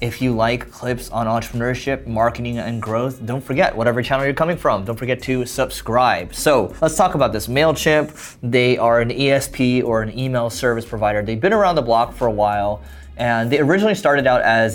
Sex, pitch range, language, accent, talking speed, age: male, 105-130 Hz, English, American, 200 wpm, 20-39